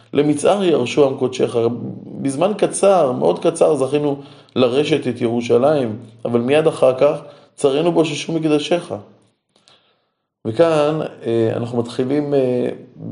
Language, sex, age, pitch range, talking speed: Hebrew, male, 20-39, 120-155 Hz, 100 wpm